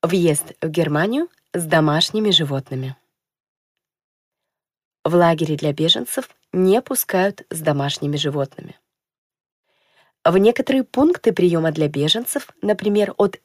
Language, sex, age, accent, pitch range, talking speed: Russian, female, 20-39, native, 160-210 Hz, 105 wpm